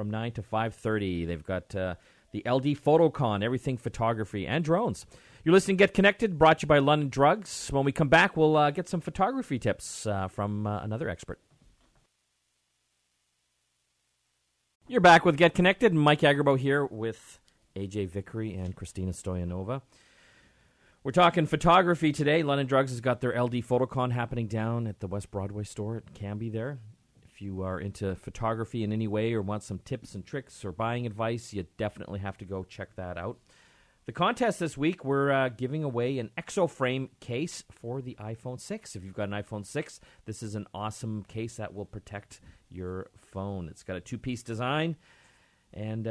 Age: 40-59